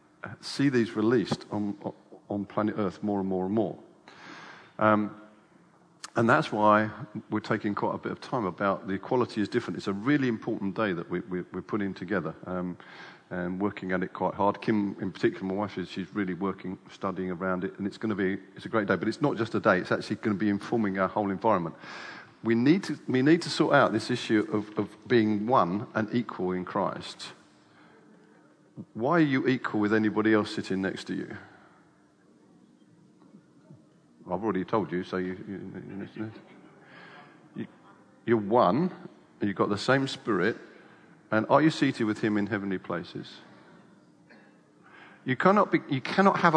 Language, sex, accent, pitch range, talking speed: English, male, British, 95-125 Hz, 180 wpm